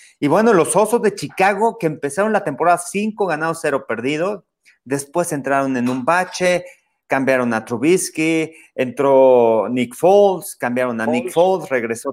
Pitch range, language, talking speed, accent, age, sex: 125-175 Hz, Spanish, 150 wpm, Mexican, 40-59, male